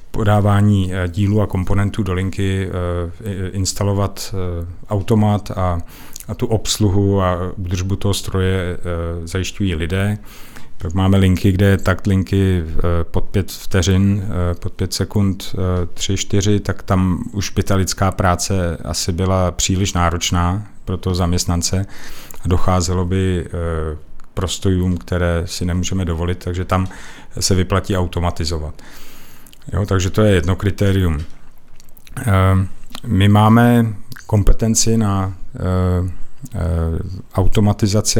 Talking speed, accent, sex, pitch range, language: 105 wpm, native, male, 90-105 Hz, Czech